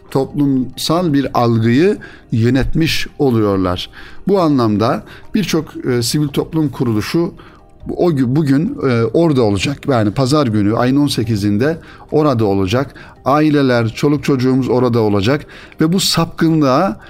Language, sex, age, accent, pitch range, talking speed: Turkish, male, 60-79, native, 110-150 Hz, 100 wpm